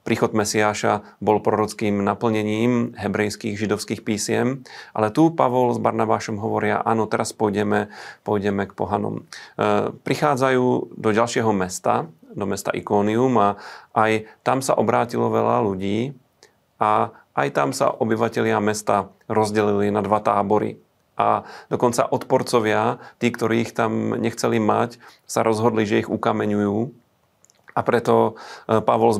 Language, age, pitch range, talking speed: Slovak, 40-59, 105-120 Hz, 125 wpm